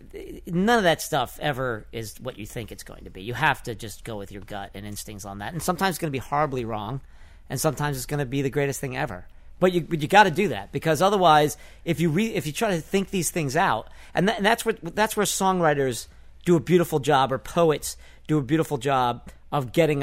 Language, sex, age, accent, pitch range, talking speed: English, male, 40-59, American, 115-165 Hz, 255 wpm